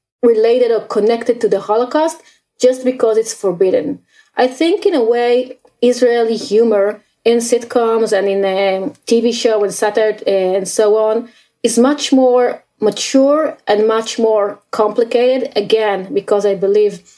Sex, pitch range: female, 215-255 Hz